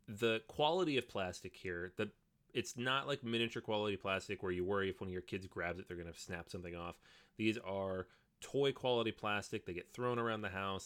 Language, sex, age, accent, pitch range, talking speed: English, male, 30-49, American, 95-120 Hz, 215 wpm